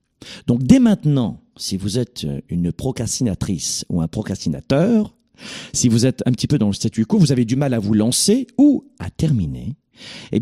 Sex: male